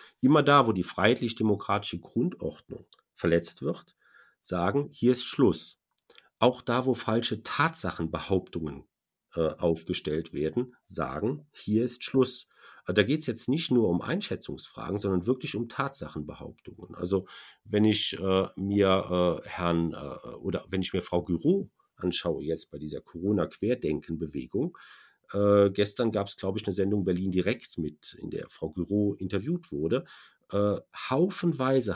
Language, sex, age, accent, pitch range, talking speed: German, male, 50-69, German, 90-120 Hz, 140 wpm